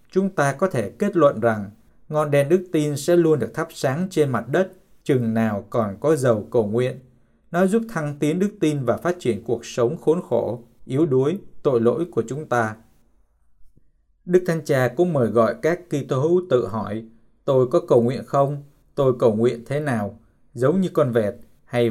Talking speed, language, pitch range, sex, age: 200 wpm, Vietnamese, 115-150 Hz, male, 20-39